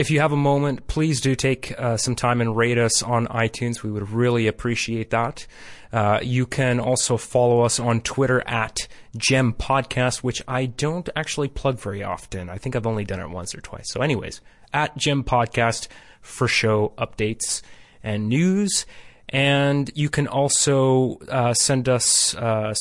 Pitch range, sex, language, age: 110-130 Hz, male, English, 30-49